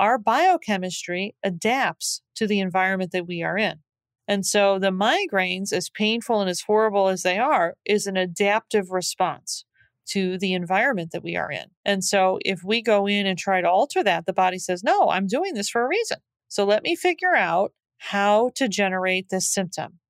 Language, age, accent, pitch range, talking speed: English, 40-59, American, 185-225 Hz, 190 wpm